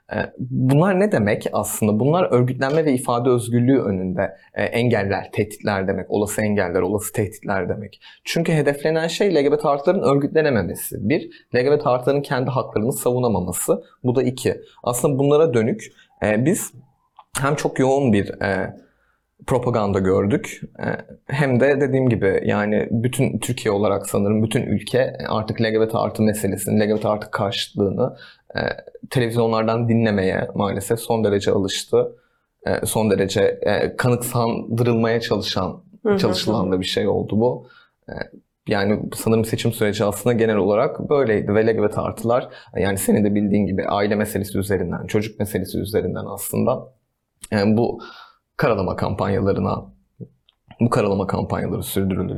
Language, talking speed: Turkish, 125 wpm